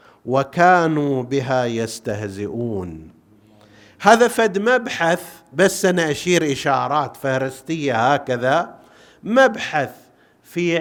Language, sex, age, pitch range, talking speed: Arabic, male, 50-69, 140-205 Hz, 80 wpm